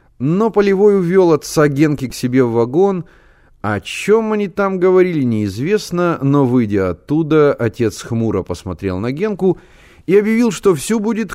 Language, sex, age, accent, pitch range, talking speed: Russian, male, 30-49, native, 95-155 Hz, 150 wpm